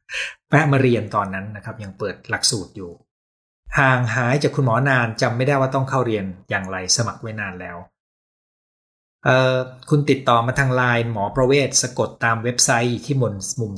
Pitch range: 105-140 Hz